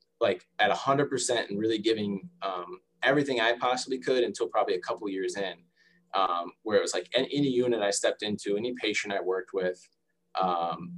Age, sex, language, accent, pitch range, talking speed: 20-39, male, English, American, 95-125 Hz, 200 wpm